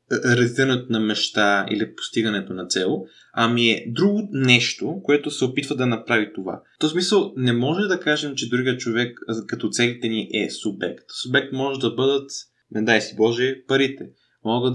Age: 20-39